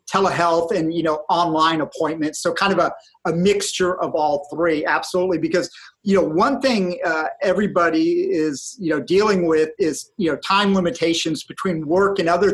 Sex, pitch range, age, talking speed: male, 165-195 Hz, 40-59, 175 wpm